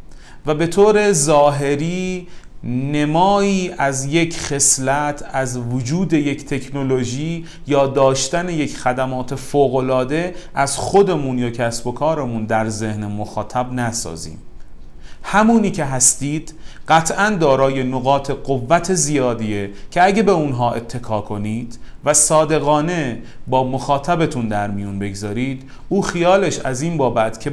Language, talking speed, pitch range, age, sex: Persian, 120 wpm, 115-150 Hz, 30-49, male